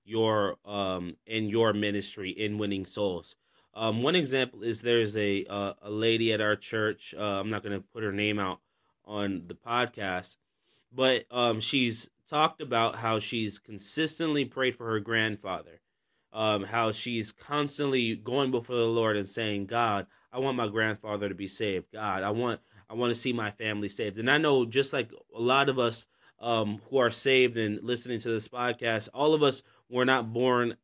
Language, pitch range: English, 110-125 Hz